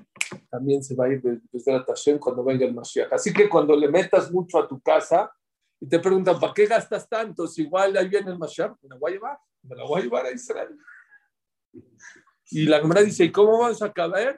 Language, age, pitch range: English, 50-69, 140-210 Hz